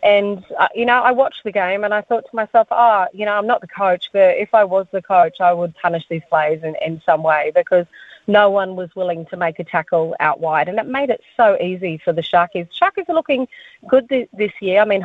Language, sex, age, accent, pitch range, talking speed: English, female, 30-49, Australian, 175-210 Hz, 260 wpm